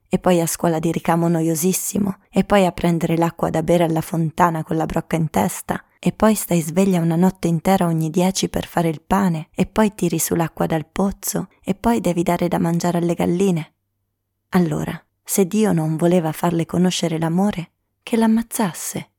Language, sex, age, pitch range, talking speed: Italian, female, 20-39, 165-195 Hz, 180 wpm